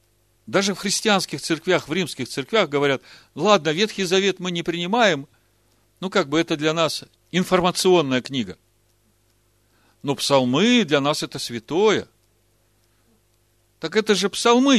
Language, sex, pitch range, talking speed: Russian, male, 115-160 Hz, 130 wpm